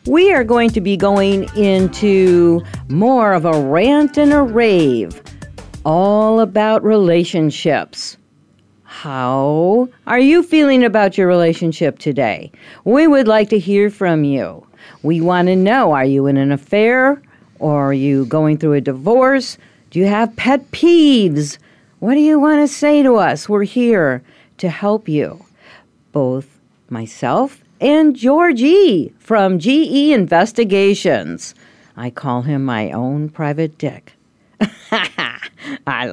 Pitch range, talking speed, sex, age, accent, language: 155-240 Hz, 135 wpm, female, 50-69, American, English